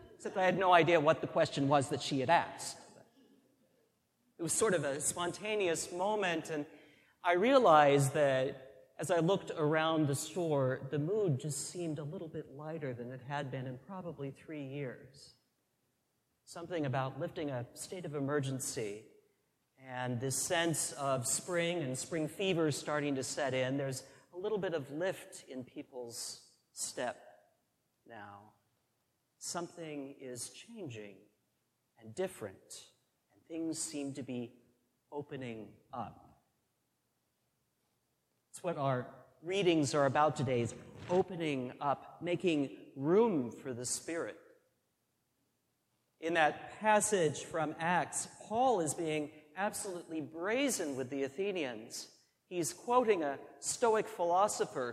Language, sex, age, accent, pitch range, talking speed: English, male, 40-59, American, 135-175 Hz, 130 wpm